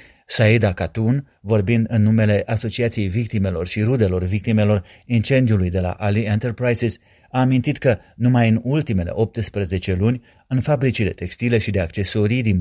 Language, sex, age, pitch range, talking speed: Romanian, male, 30-49, 105-125 Hz, 145 wpm